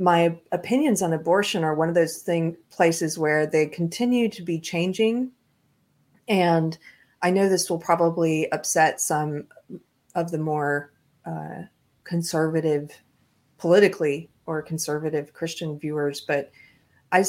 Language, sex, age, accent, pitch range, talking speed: English, female, 40-59, American, 150-175 Hz, 125 wpm